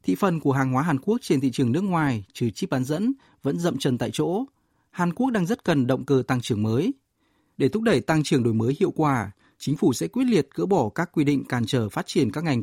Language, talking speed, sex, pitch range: Vietnamese, 265 wpm, male, 125-175 Hz